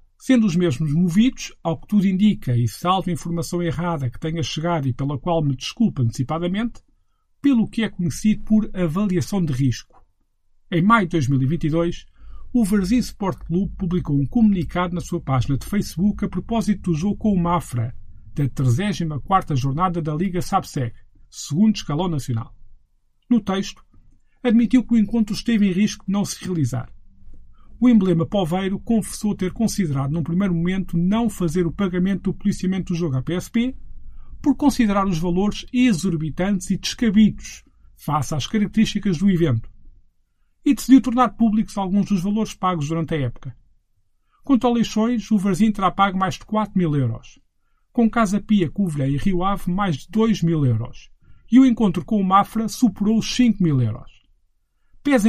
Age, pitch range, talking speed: 50-69, 145-210 Hz, 165 wpm